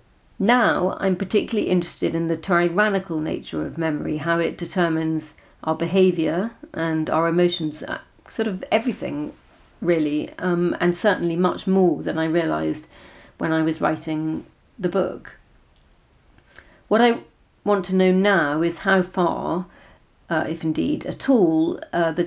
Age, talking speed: 40-59, 140 wpm